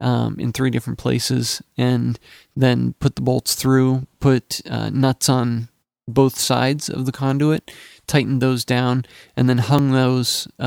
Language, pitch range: English, 120-130 Hz